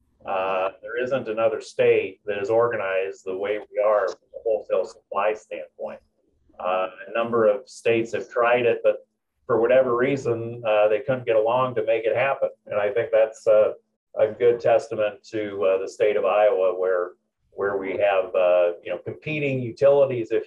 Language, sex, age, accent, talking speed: English, male, 30-49, American, 180 wpm